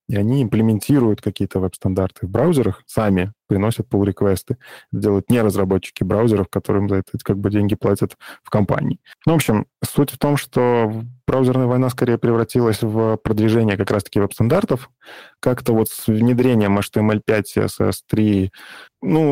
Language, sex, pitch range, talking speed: Russian, male, 100-120 Hz, 145 wpm